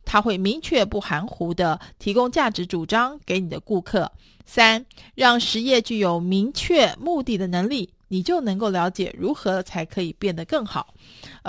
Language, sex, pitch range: Chinese, female, 190-270 Hz